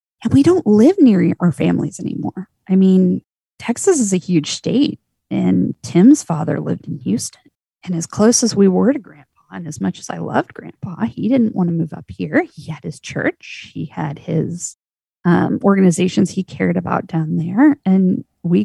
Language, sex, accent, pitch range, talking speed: English, female, American, 170-210 Hz, 190 wpm